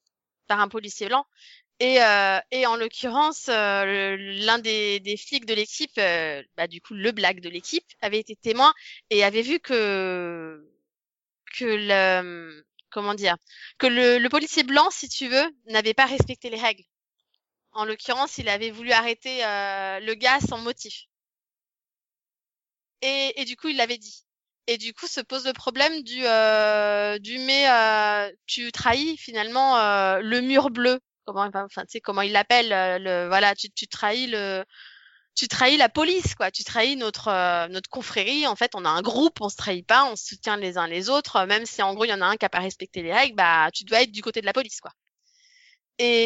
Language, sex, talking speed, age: French, female, 195 wpm, 20-39